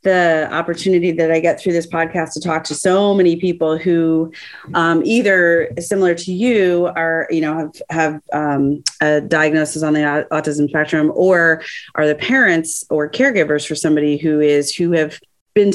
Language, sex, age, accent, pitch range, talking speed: English, female, 30-49, American, 150-180 Hz, 170 wpm